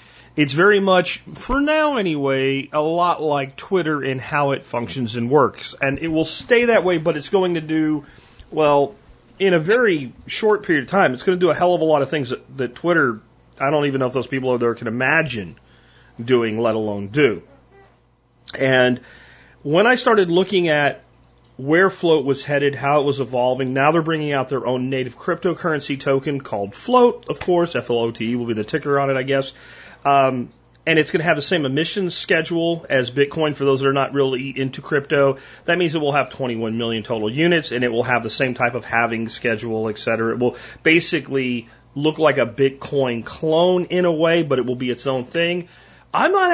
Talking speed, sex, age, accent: 210 wpm, male, 40-59, American